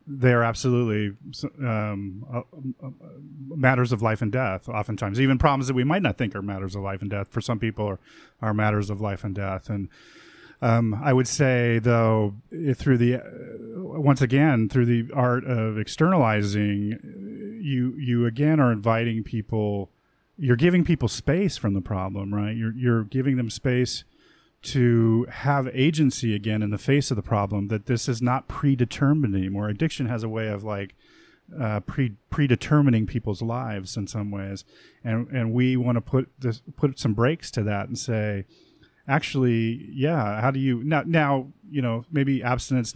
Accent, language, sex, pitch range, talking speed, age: American, English, male, 105-130 Hz, 170 wpm, 30-49